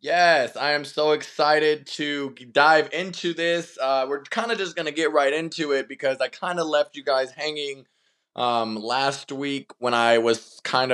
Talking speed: 190 wpm